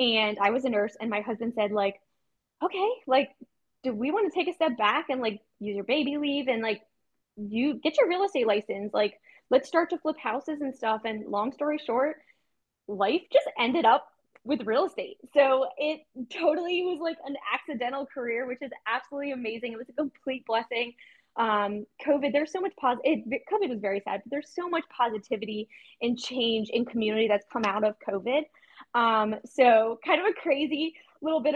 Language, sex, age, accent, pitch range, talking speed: English, female, 10-29, American, 225-290 Hz, 200 wpm